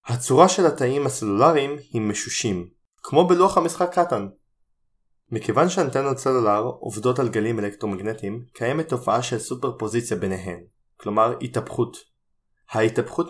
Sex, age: male, 20-39